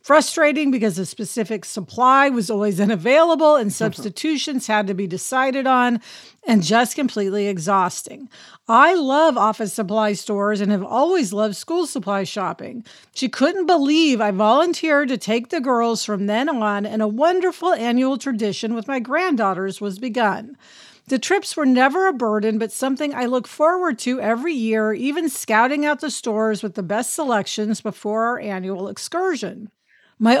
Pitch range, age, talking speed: 215-290 Hz, 50-69, 160 wpm